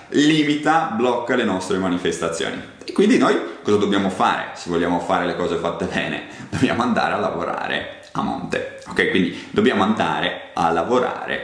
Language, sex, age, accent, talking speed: Italian, male, 30-49, native, 155 wpm